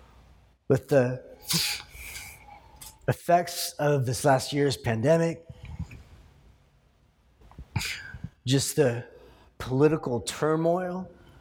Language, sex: English, male